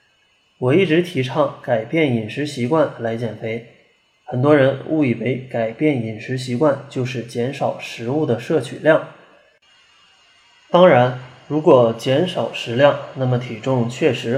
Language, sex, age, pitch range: Chinese, male, 20-39, 120-150 Hz